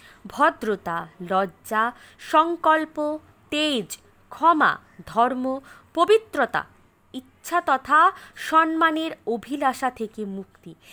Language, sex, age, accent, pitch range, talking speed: Bengali, female, 20-39, native, 210-305 Hz, 70 wpm